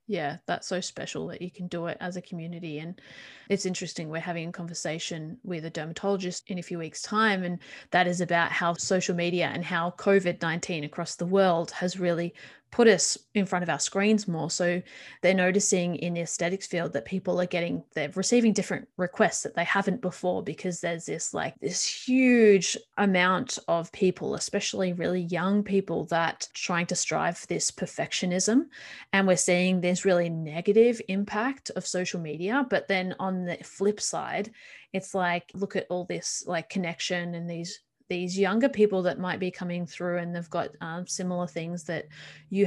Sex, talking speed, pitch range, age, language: female, 185 wpm, 170-195 Hz, 30-49, English